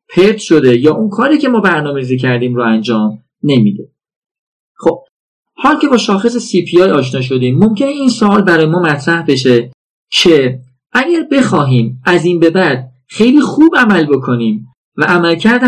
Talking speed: 155 wpm